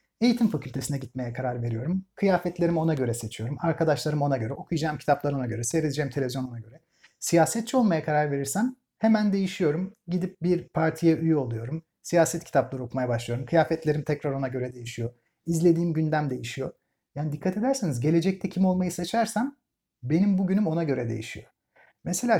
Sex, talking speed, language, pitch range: male, 145 wpm, Turkish, 140-195 Hz